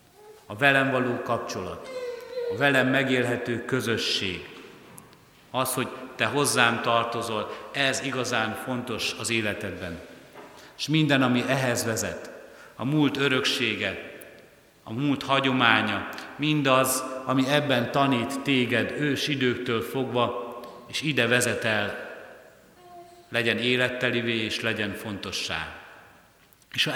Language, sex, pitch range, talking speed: Hungarian, male, 110-130 Hz, 105 wpm